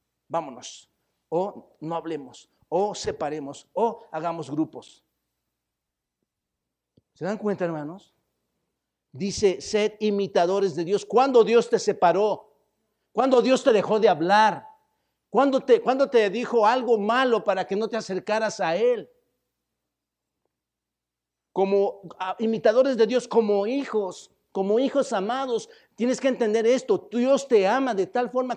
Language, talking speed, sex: Spanish, 130 wpm, male